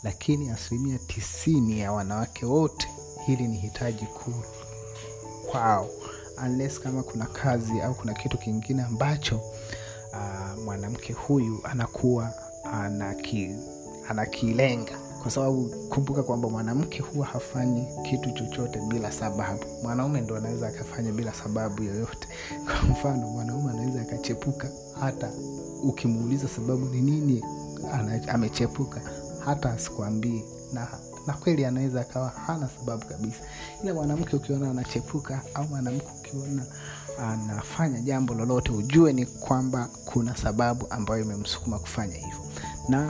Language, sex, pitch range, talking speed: Swahili, male, 110-135 Hz, 115 wpm